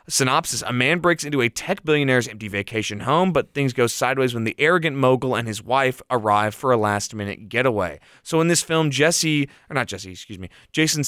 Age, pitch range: 20-39, 110-140 Hz